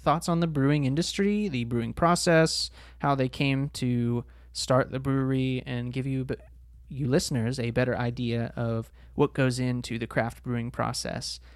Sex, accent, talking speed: male, American, 160 wpm